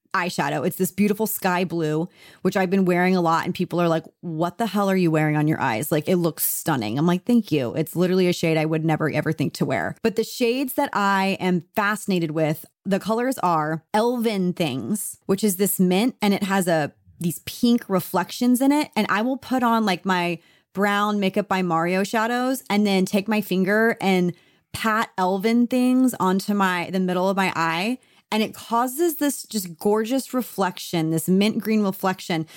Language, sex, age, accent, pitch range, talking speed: English, female, 30-49, American, 175-215 Hz, 200 wpm